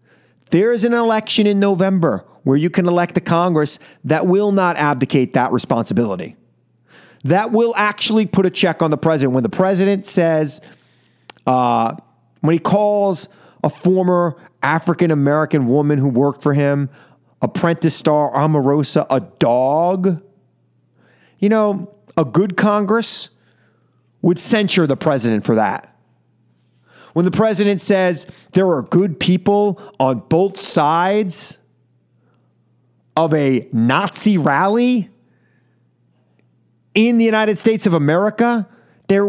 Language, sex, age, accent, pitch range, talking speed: English, male, 30-49, American, 140-200 Hz, 125 wpm